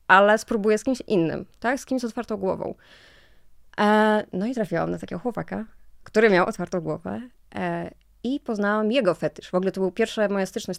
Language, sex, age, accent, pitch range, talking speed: Polish, female, 20-39, native, 170-205 Hz, 180 wpm